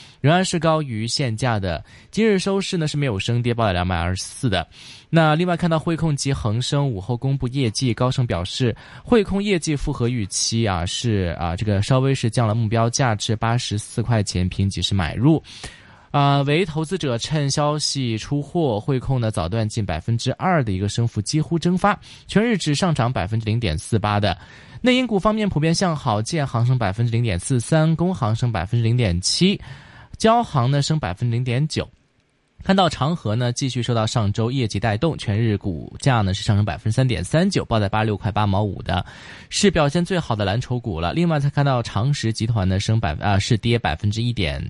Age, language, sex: 20-39, Chinese, male